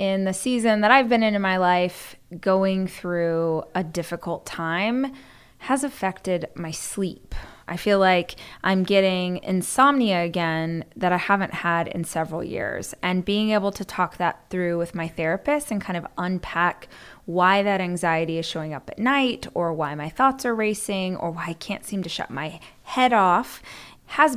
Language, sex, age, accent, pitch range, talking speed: English, female, 20-39, American, 180-225 Hz, 175 wpm